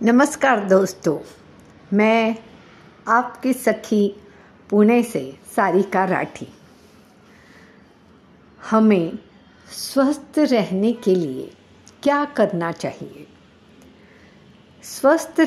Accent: native